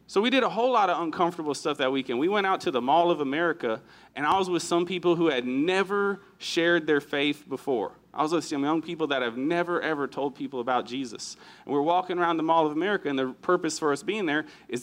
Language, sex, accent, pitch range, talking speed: English, male, American, 145-190 Hz, 250 wpm